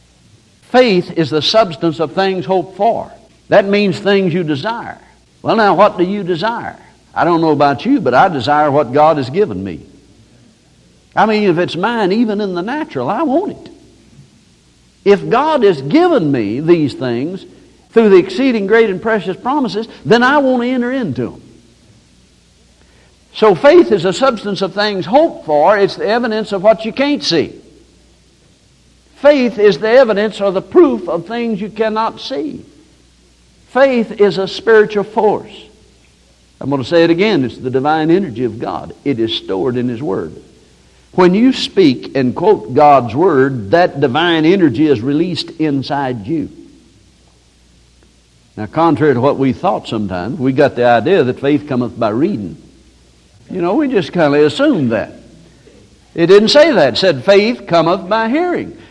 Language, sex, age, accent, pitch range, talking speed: English, male, 60-79, American, 130-220 Hz, 170 wpm